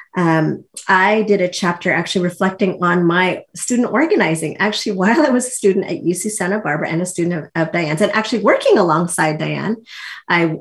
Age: 30-49